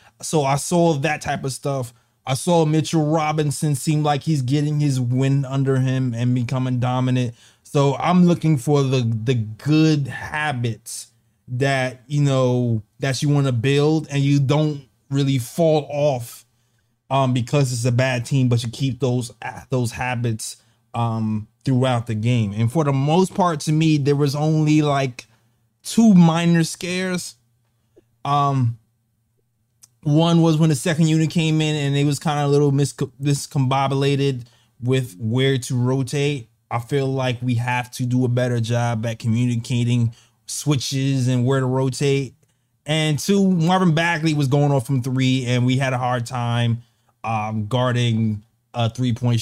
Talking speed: 160 wpm